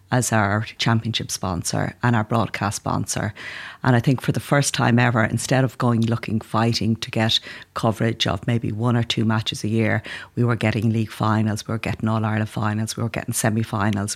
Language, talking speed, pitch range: English, 195 wpm, 110-125 Hz